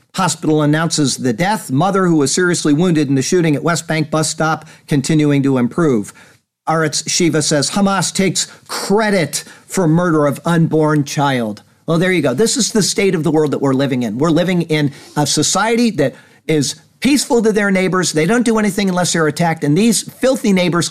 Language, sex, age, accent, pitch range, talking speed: English, male, 50-69, American, 150-205 Hz, 195 wpm